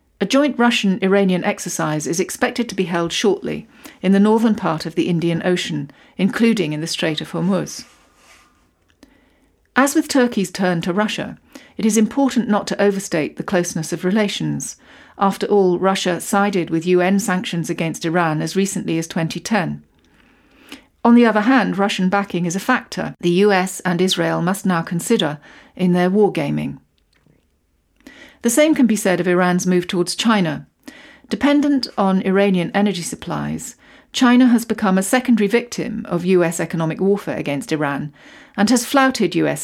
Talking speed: 155 wpm